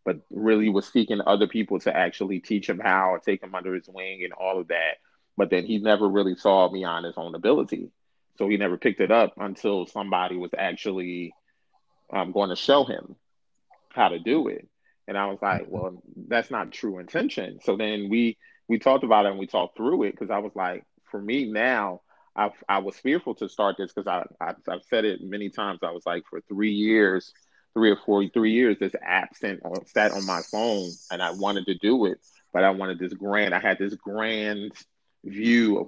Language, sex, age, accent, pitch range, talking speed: English, male, 30-49, American, 95-110 Hz, 215 wpm